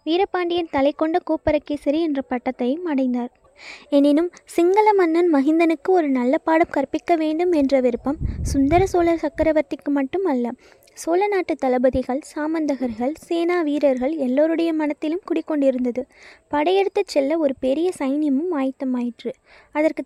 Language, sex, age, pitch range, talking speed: Tamil, female, 20-39, 270-330 Hz, 115 wpm